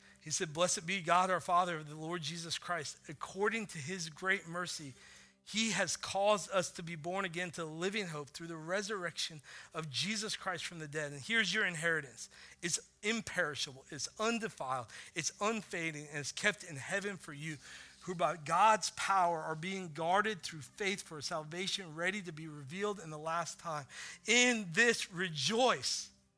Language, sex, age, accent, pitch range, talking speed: English, male, 40-59, American, 130-175 Hz, 170 wpm